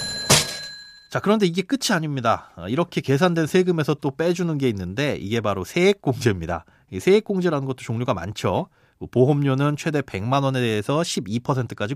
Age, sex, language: 30-49, male, Korean